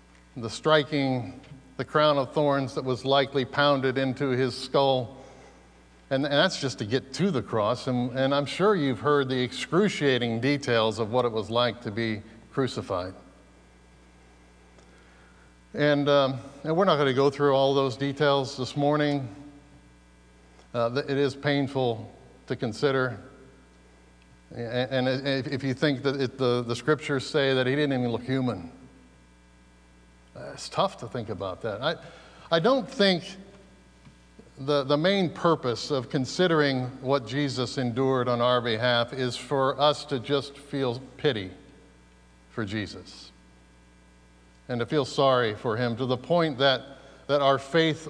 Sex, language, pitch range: male, English, 110-140 Hz